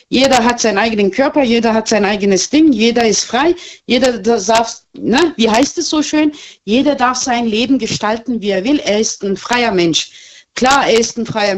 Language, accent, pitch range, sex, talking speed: German, German, 210-280 Hz, female, 200 wpm